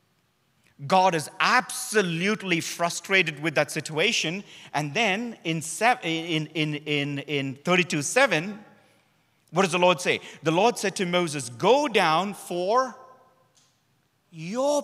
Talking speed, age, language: 115 wpm, 40-59, English